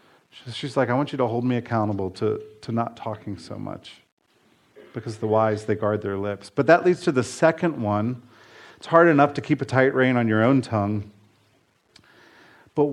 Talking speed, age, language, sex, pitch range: 195 wpm, 40-59, English, male, 110-135 Hz